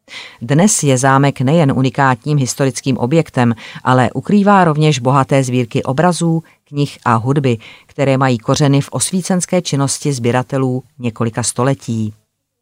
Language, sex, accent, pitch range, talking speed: Czech, female, native, 125-145 Hz, 120 wpm